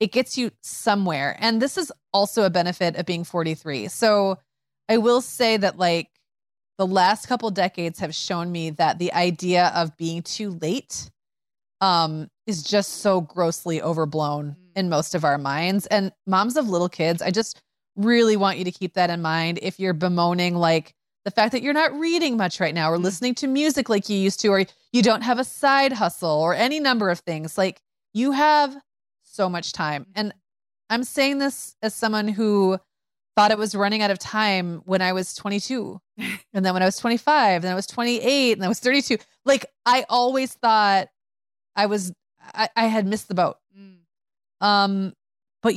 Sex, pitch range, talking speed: female, 175-225 Hz, 190 wpm